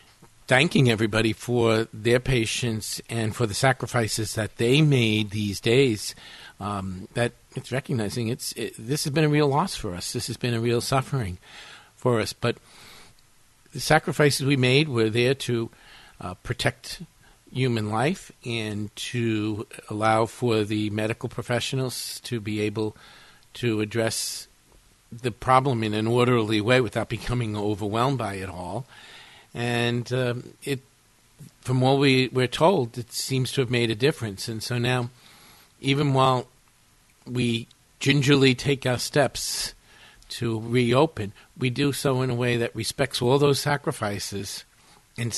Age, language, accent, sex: 50-69, English, American, male